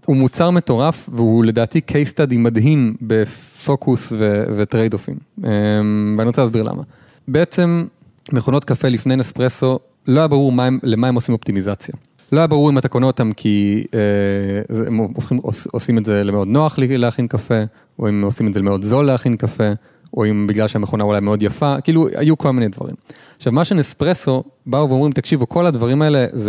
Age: 30-49